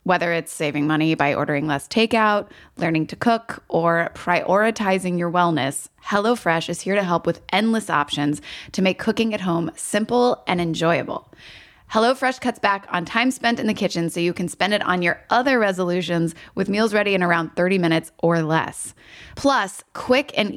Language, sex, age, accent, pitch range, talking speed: English, female, 20-39, American, 170-225 Hz, 180 wpm